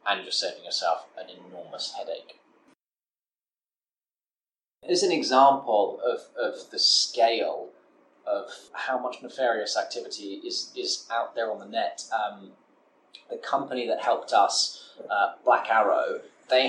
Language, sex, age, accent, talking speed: English, male, 20-39, British, 130 wpm